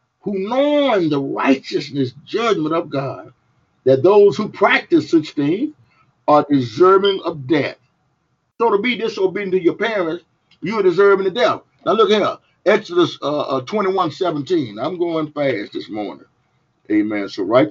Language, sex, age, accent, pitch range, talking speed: English, male, 50-69, American, 125-185 Hz, 155 wpm